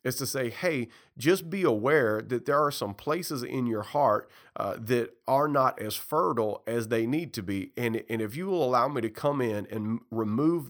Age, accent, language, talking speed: 40-59, American, English, 215 wpm